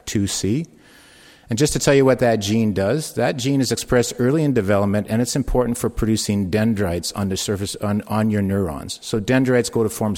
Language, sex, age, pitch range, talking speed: English, male, 50-69, 100-125 Hz, 205 wpm